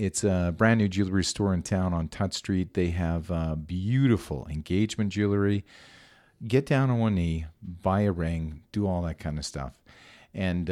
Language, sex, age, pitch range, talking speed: English, male, 40-59, 85-110 Hz, 175 wpm